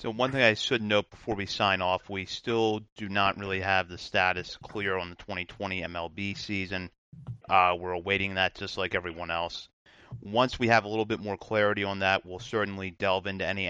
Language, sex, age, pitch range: English, male, 30-49, 95-110 Hz